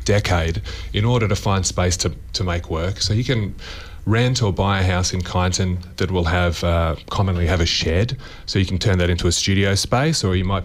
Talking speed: 225 wpm